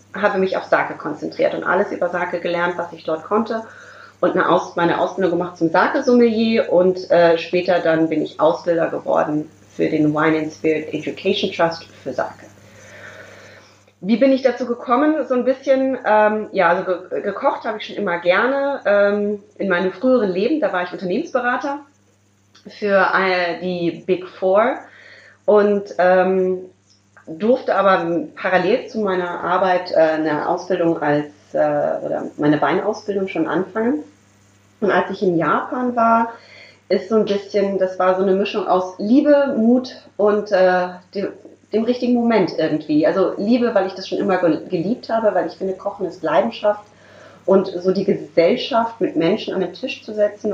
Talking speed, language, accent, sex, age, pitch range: 160 wpm, German, German, female, 30-49, 170-220 Hz